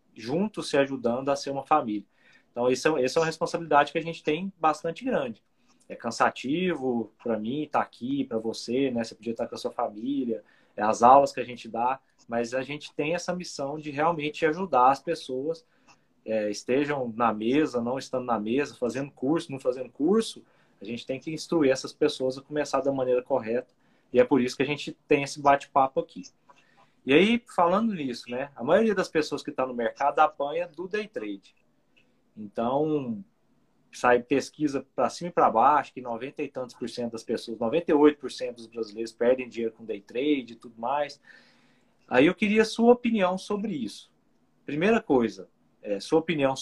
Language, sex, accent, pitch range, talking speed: Portuguese, male, Brazilian, 125-170 Hz, 190 wpm